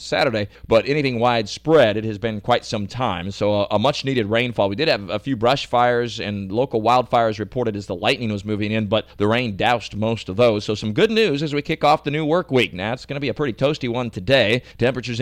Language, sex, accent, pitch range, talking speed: English, male, American, 110-135 Hz, 250 wpm